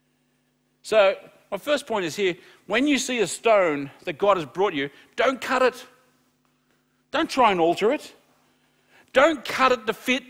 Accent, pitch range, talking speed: Australian, 140-225 Hz, 170 wpm